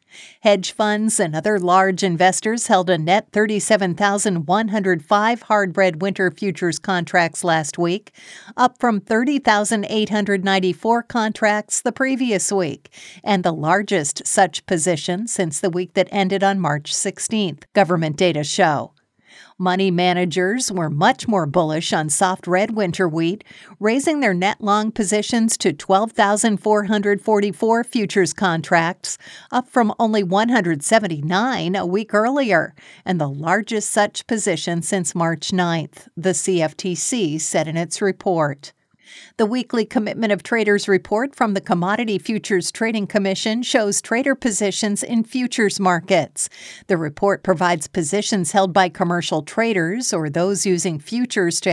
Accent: American